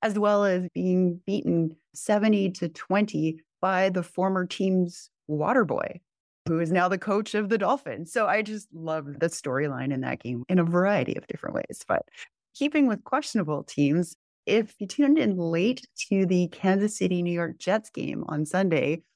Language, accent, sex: English, American, female